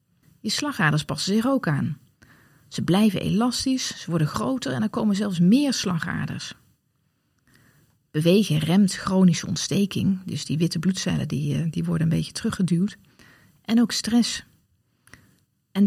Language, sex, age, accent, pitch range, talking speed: Dutch, female, 40-59, Dutch, 155-210 Hz, 130 wpm